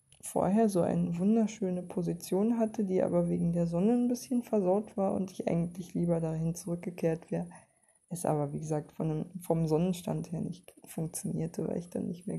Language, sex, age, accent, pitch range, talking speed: German, female, 20-39, German, 160-190 Hz, 175 wpm